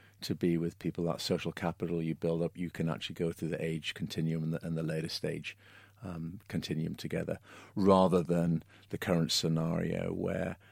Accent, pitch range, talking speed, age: British, 85-95 Hz, 180 wpm, 50-69